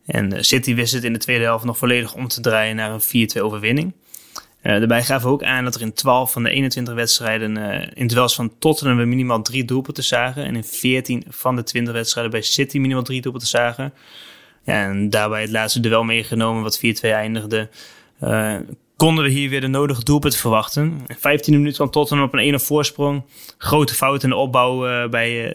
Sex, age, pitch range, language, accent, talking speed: male, 20-39, 115-135 Hz, Dutch, Dutch, 210 wpm